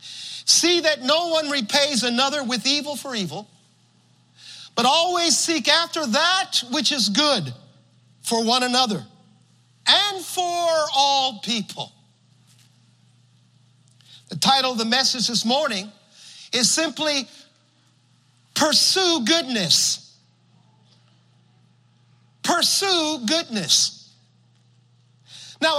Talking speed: 90 wpm